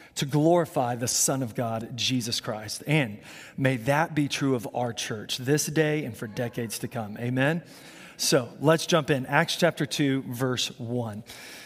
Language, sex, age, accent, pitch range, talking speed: English, male, 30-49, American, 140-190 Hz, 170 wpm